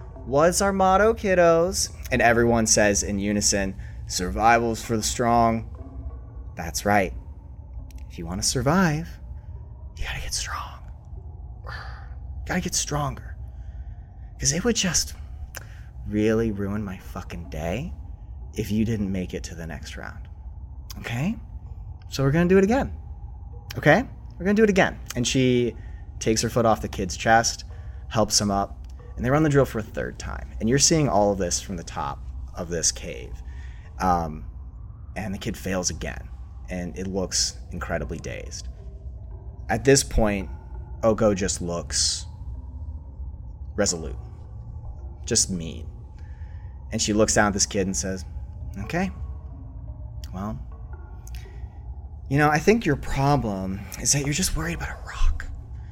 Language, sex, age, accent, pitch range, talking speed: English, male, 30-49, American, 80-115 Hz, 150 wpm